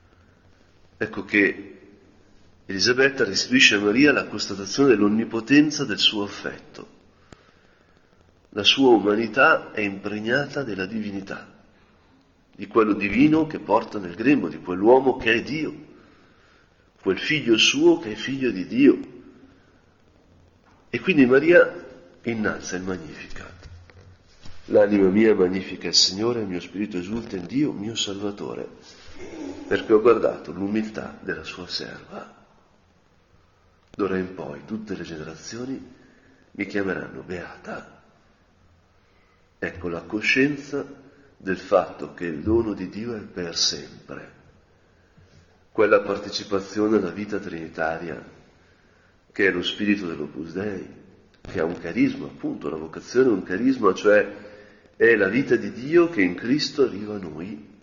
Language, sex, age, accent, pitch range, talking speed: Italian, male, 50-69, native, 90-120 Hz, 125 wpm